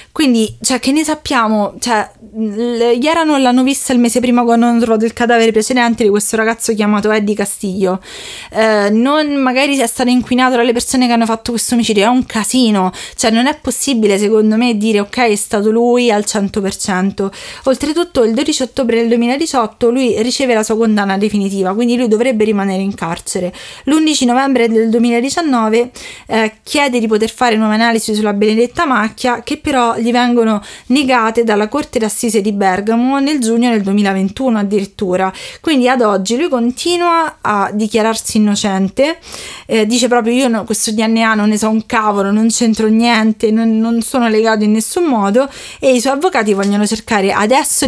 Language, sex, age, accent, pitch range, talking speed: Italian, female, 20-39, native, 210-250 Hz, 175 wpm